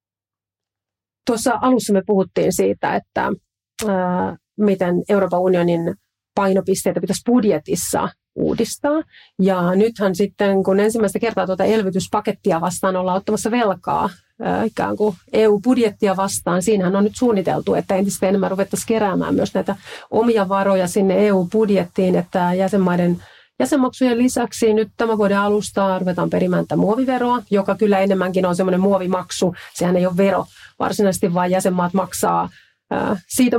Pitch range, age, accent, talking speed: 185-215 Hz, 40-59, native, 130 wpm